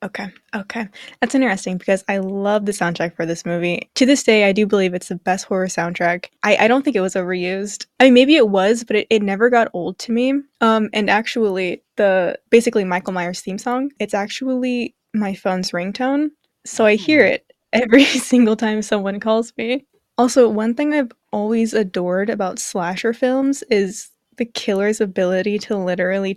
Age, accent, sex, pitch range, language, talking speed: 10-29, American, female, 195-240 Hz, English, 185 wpm